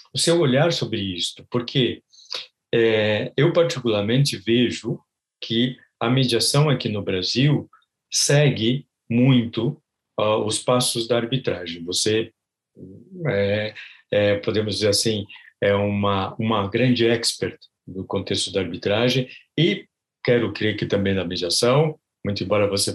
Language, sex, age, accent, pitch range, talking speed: Portuguese, male, 50-69, Brazilian, 105-130 Hz, 115 wpm